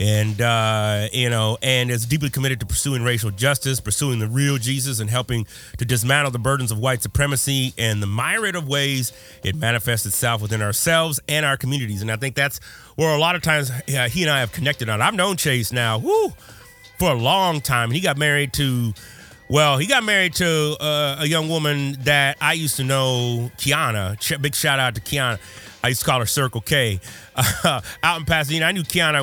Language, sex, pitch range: English, male, 110-145 Hz